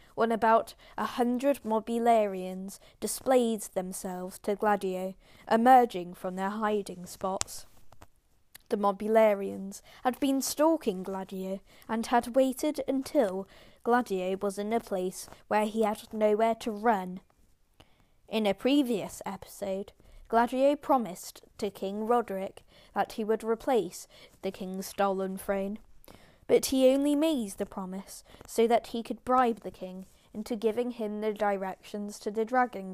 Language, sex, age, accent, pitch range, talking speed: English, female, 10-29, British, 195-240 Hz, 135 wpm